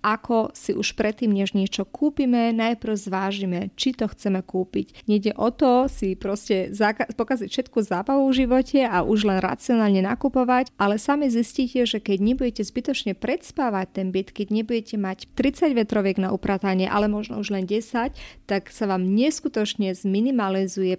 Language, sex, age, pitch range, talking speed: Slovak, female, 30-49, 195-235 Hz, 160 wpm